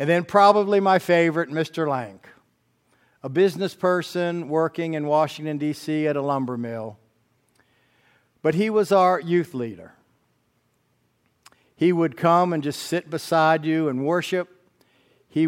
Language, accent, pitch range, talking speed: English, American, 140-180 Hz, 135 wpm